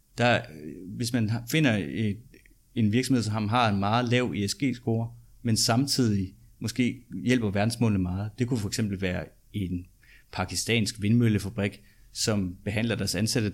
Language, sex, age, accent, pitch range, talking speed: Danish, male, 30-49, native, 100-125 Hz, 135 wpm